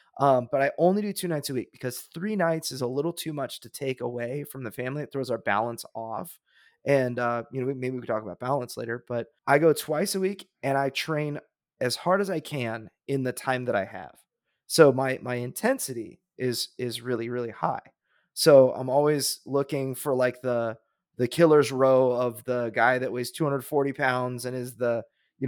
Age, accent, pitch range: 20-39, American, 120-145 Hz